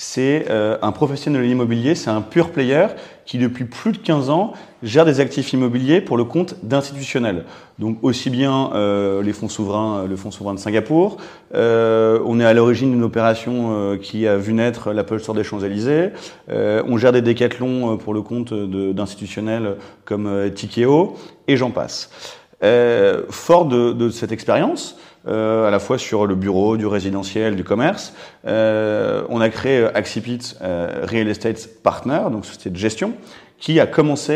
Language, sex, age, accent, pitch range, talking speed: French, male, 30-49, French, 110-140 Hz, 175 wpm